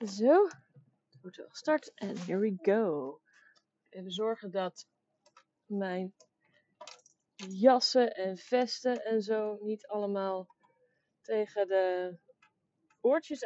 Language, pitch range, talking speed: Dutch, 190-290 Hz, 105 wpm